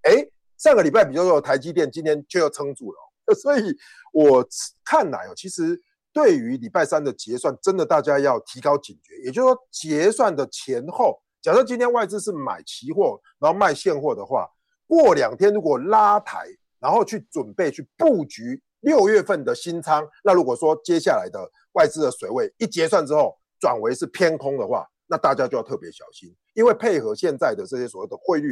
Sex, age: male, 50-69